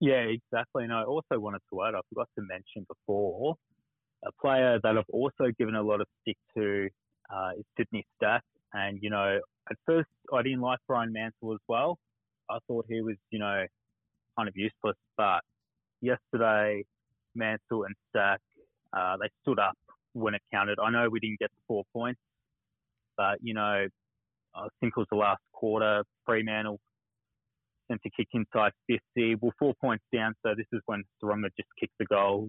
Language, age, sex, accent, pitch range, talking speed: English, 20-39, male, Australian, 105-120 Hz, 180 wpm